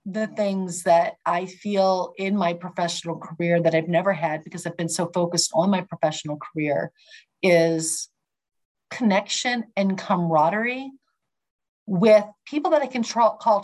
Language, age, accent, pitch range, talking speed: English, 40-59, American, 175-220 Hz, 140 wpm